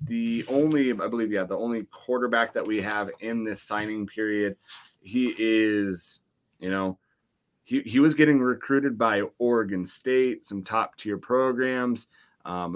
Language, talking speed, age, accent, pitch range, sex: English, 150 wpm, 30-49, American, 100-115 Hz, male